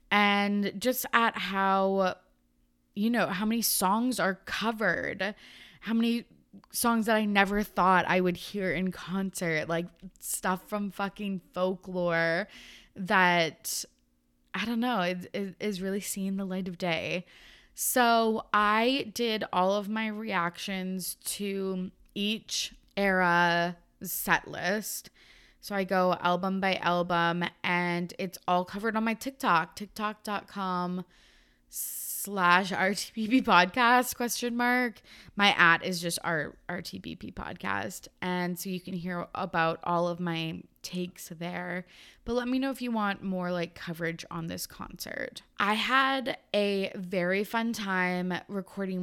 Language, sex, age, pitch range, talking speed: English, female, 20-39, 180-210 Hz, 135 wpm